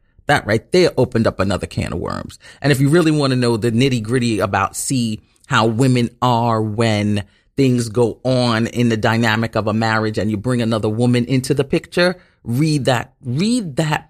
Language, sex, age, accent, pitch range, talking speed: English, male, 30-49, American, 115-160 Hz, 195 wpm